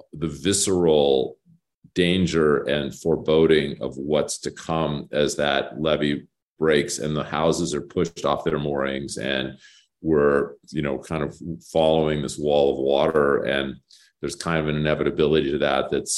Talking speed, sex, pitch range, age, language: 150 wpm, male, 75-90 Hz, 40-59, English